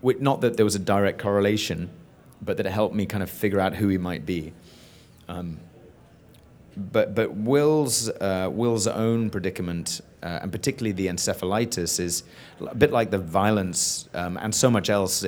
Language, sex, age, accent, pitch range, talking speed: English, male, 30-49, British, 90-110 Hz, 175 wpm